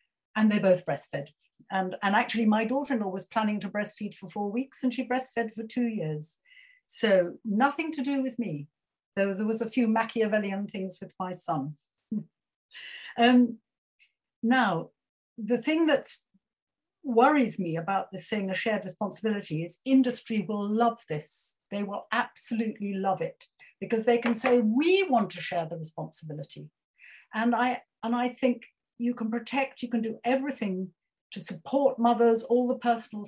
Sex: female